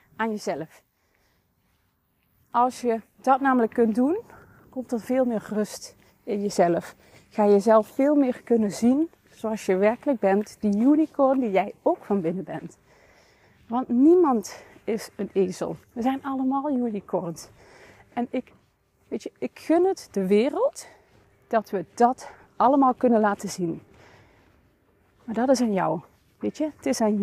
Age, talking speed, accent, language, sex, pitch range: 30-49, 150 wpm, Dutch, Dutch, female, 205-275 Hz